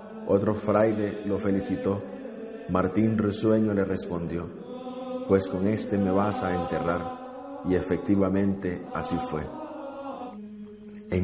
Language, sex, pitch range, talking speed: Spanish, male, 100-140 Hz, 105 wpm